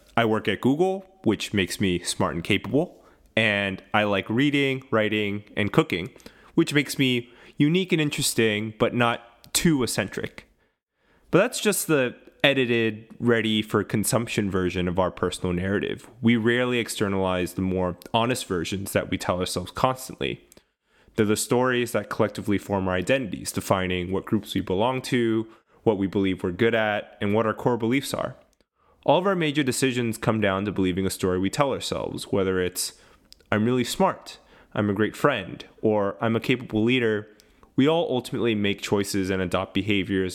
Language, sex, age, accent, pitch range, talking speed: English, male, 30-49, American, 95-120 Hz, 165 wpm